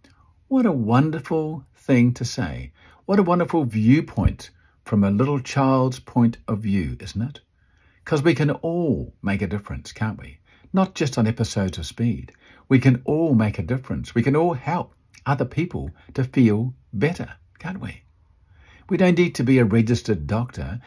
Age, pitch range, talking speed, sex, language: 50-69, 100-145 Hz, 170 wpm, male, English